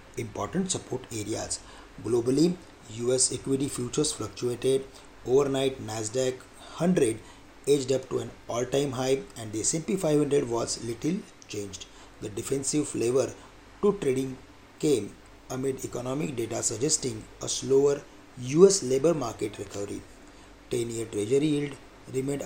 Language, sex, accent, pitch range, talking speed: English, male, Indian, 115-145 Hz, 125 wpm